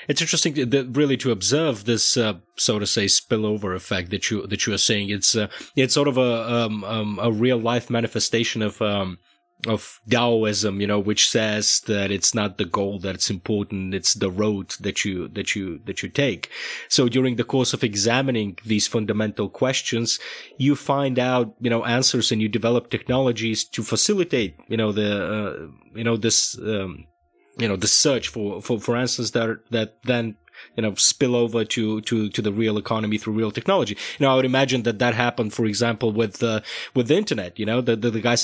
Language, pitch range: Bulgarian, 105-125 Hz